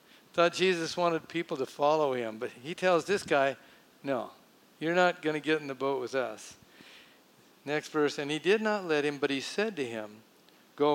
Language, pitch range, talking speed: English, 130-165 Hz, 205 wpm